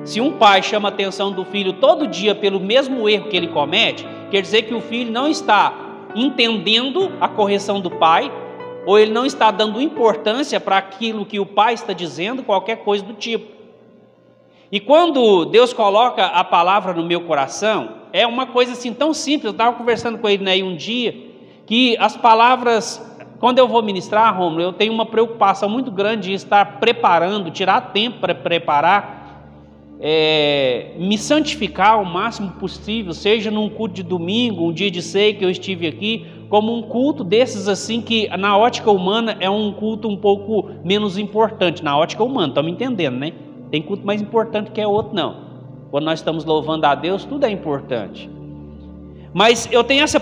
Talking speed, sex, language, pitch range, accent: 180 wpm, male, Portuguese, 190-230 Hz, Brazilian